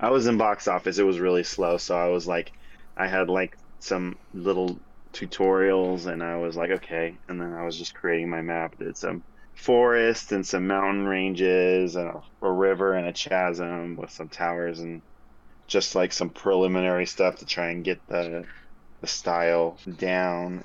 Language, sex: English, male